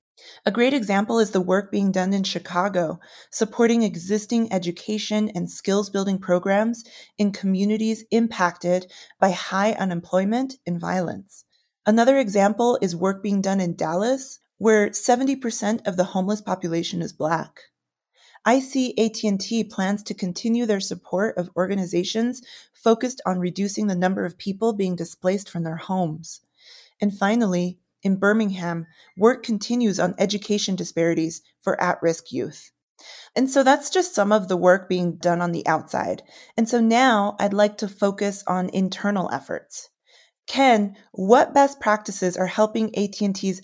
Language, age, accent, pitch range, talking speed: English, 30-49, American, 180-220 Hz, 145 wpm